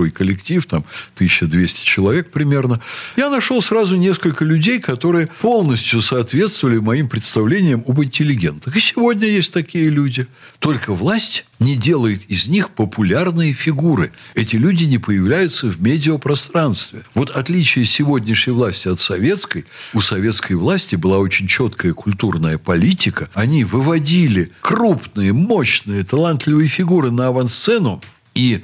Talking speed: 125 wpm